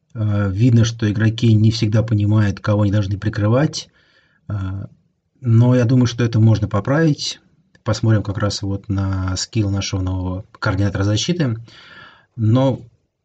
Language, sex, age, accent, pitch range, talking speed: Russian, male, 30-49, native, 105-125 Hz, 120 wpm